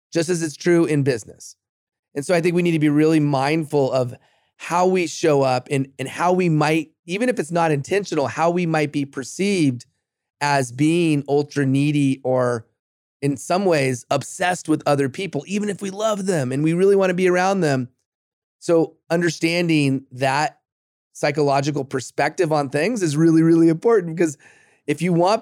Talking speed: 175 wpm